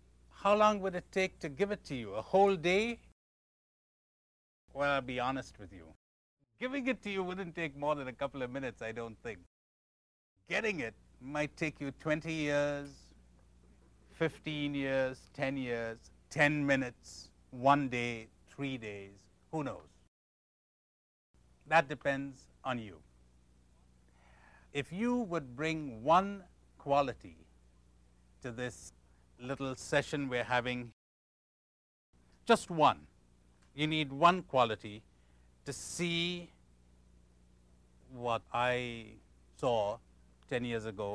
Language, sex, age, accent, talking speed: English, male, 60-79, Indian, 120 wpm